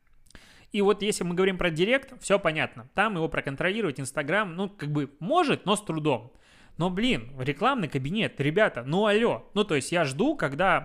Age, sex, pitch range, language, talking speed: 20-39, male, 135-185 Hz, Russian, 185 wpm